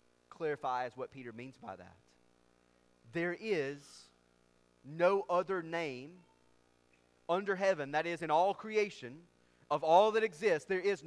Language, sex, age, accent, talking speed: English, male, 30-49, American, 130 wpm